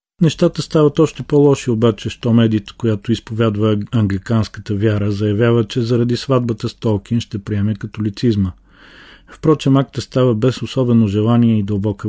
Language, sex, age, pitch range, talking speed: Bulgarian, male, 40-59, 105-120 Hz, 140 wpm